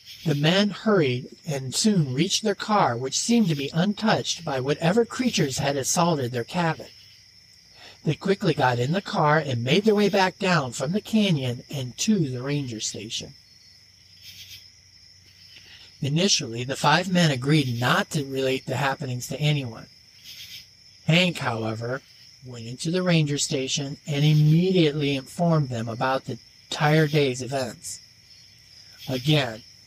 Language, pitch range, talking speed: English, 125-170 Hz, 140 wpm